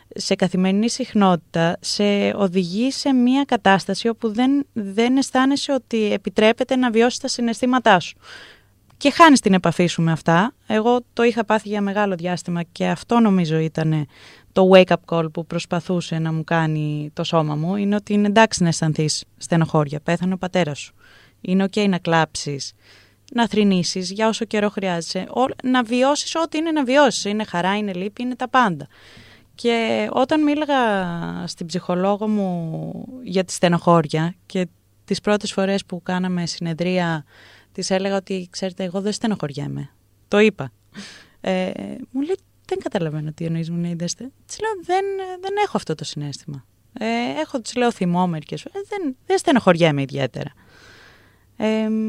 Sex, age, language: female, 20-39, Greek